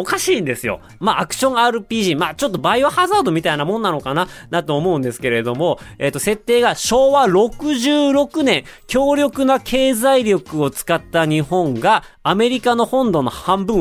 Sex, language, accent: male, Japanese, native